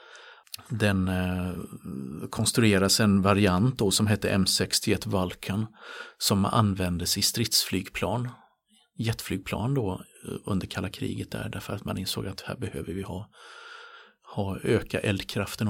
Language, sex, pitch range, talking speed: Swedish, male, 95-110 Hz, 120 wpm